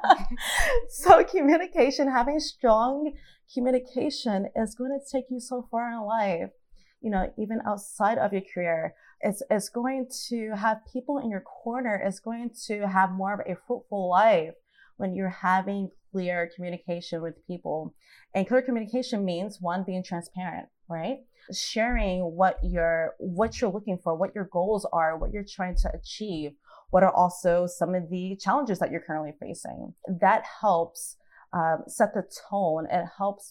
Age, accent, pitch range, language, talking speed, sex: 20-39, American, 180-235 Hz, English, 160 wpm, female